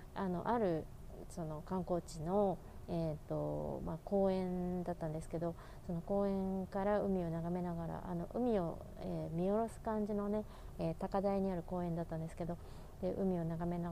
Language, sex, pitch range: Japanese, female, 165-195 Hz